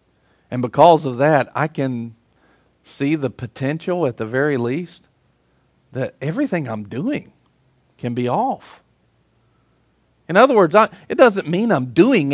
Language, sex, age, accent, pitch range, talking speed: English, male, 50-69, American, 140-215 Hz, 140 wpm